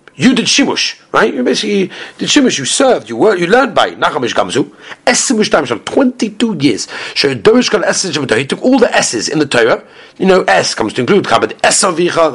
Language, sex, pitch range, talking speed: English, male, 145-215 Hz, 215 wpm